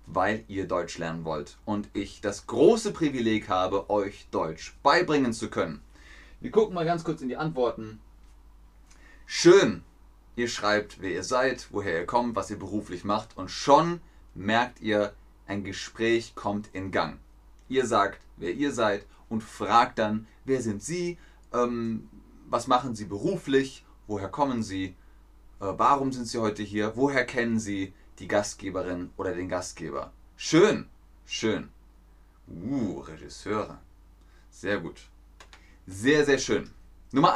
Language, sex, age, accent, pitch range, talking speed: German, male, 30-49, German, 90-120 Hz, 140 wpm